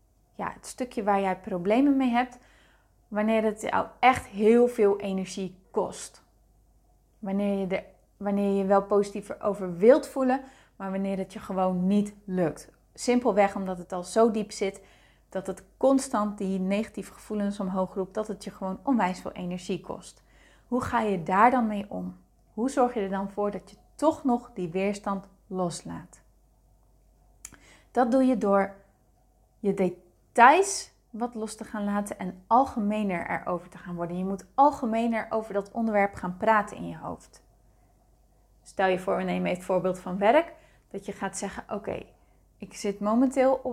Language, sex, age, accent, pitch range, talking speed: Dutch, female, 30-49, Dutch, 180-220 Hz, 170 wpm